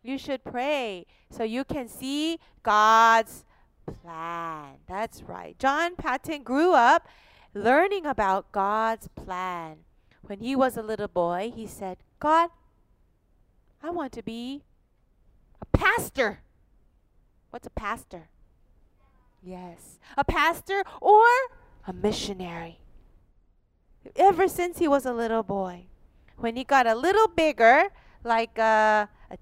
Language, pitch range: Korean, 195-320 Hz